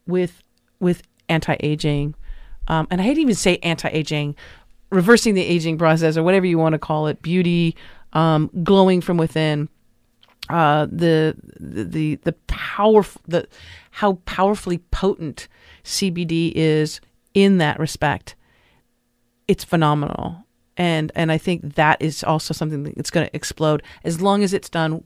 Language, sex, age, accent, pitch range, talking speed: English, female, 40-59, American, 155-180 Hz, 140 wpm